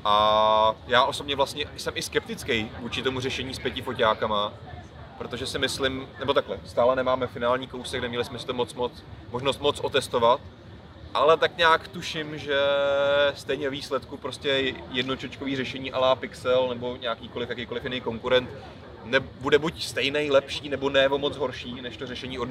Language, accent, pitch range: Czech, native, 120-140 Hz